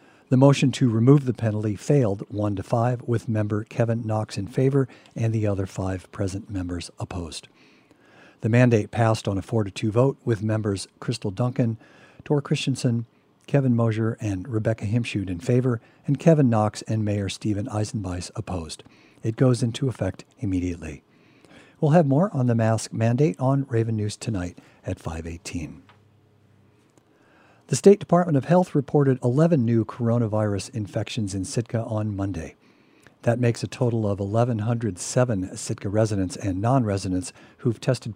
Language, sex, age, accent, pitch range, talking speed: English, male, 50-69, American, 105-130 Hz, 150 wpm